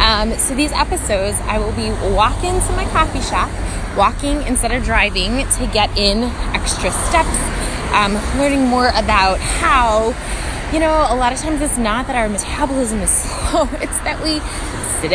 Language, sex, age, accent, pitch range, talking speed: English, female, 20-39, American, 210-290 Hz, 170 wpm